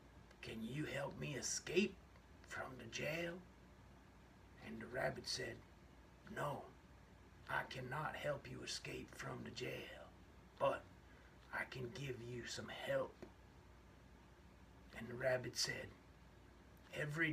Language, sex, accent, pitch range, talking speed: English, male, American, 90-130 Hz, 115 wpm